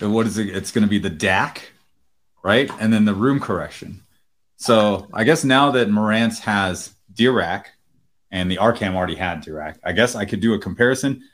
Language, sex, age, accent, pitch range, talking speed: English, male, 30-49, American, 100-145 Hz, 190 wpm